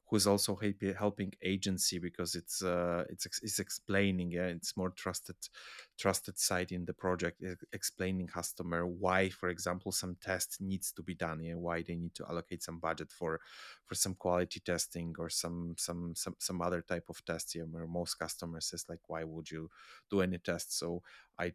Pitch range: 85-95 Hz